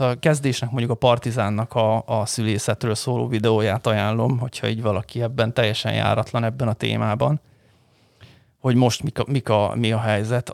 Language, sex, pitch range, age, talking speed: Hungarian, male, 115-145 Hz, 30-49, 140 wpm